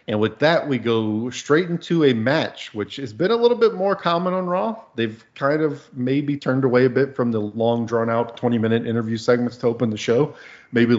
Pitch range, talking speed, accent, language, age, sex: 110-125 Hz, 215 wpm, American, English, 40-59, male